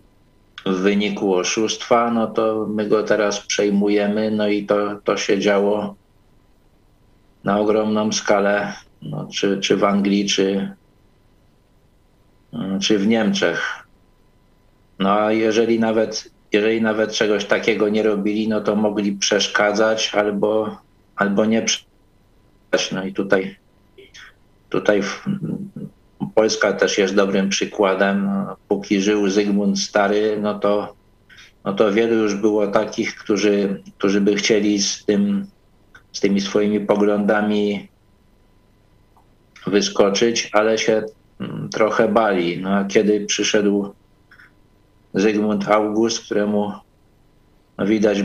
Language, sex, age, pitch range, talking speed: Polish, male, 50-69, 100-110 Hz, 110 wpm